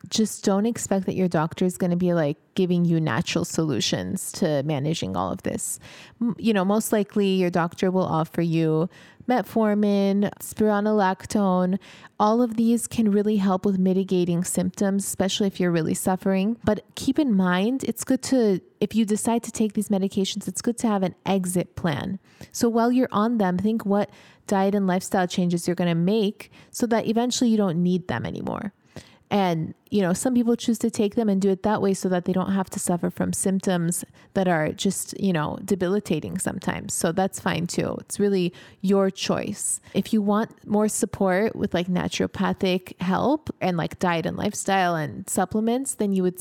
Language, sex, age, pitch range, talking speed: English, female, 20-39, 180-215 Hz, 190 wpm